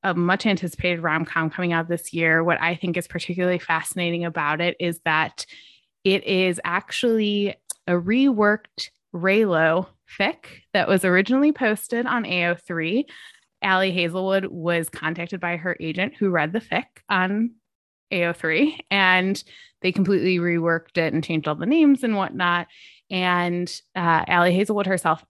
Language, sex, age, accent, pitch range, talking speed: English, female, 20-39, American, 170-230 Hz, 145 wpm